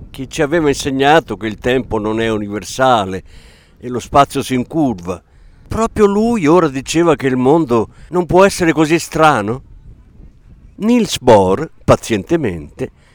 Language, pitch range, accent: Italian, 95-150 Hz, native